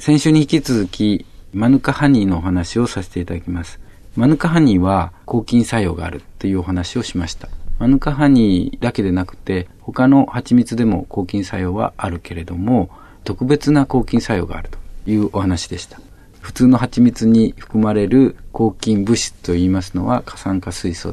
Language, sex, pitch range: Japanese, male, 90-125 Hz